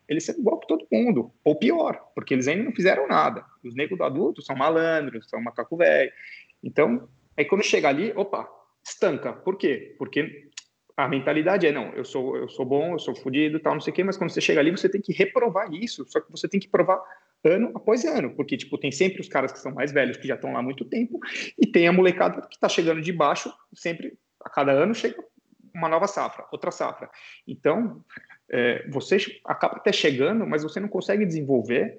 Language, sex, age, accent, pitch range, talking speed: Portuguese, male, 30-49, Brazilian, 135-180 Hz, 220 wpm